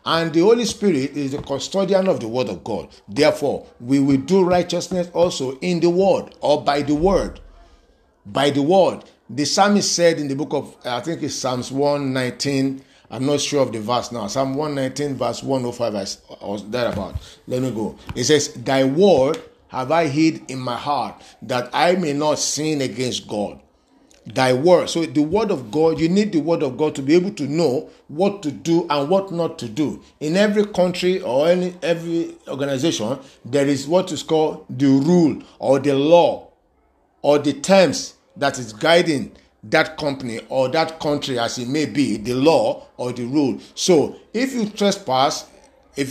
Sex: male